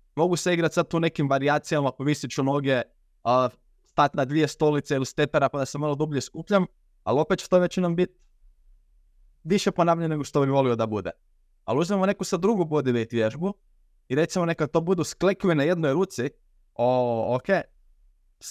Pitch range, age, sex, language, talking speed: 130-170 Hz, 20-39, male, Croatian, 185 wpm